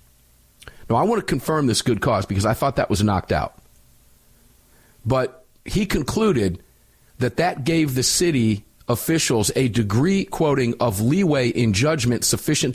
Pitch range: 105-145 Hz